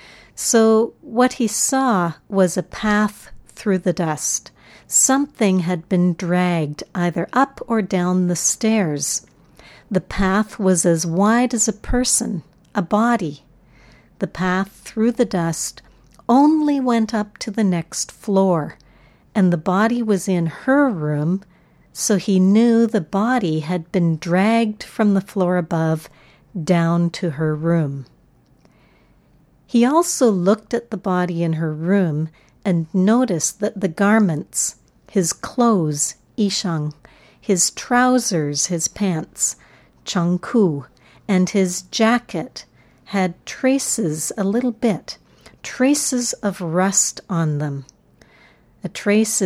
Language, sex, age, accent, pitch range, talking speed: English, female, 60-79, American, 170-220 Hz, 125 wpm